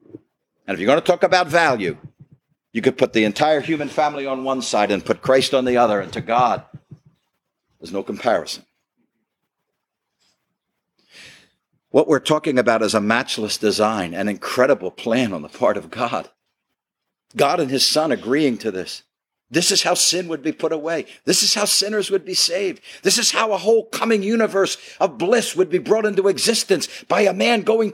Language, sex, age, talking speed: English, male, 60-79, 185 wpm